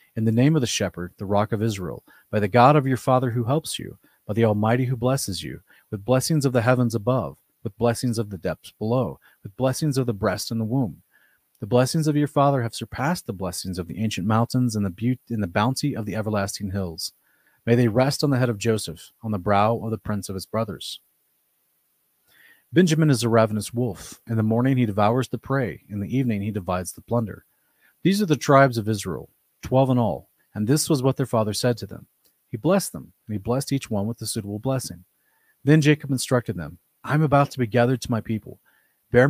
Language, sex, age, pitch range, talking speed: English, male, 30-49, 105-130 Hz, 225 wpm